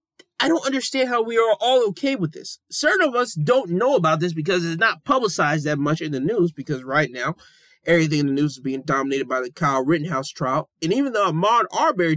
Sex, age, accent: male, 20-39, American